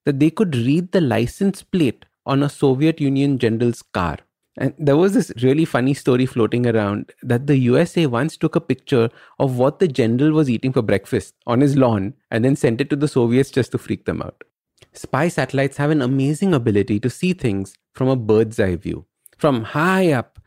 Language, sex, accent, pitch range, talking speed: English, male, Indian, 115-155 Hz, 200 wpm